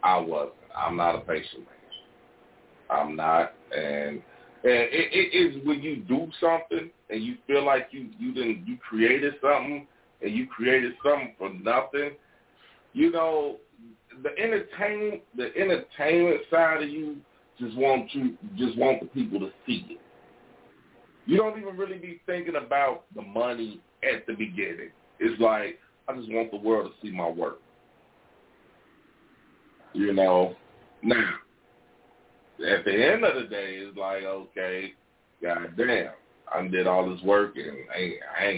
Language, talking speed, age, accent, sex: English, 150 wpm, 40-59, American, male